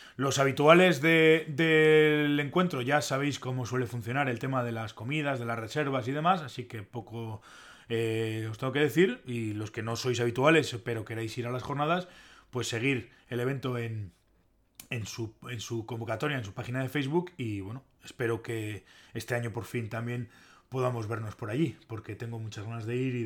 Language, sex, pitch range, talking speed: Spanish, male, 115-145 Hz, 185 wpm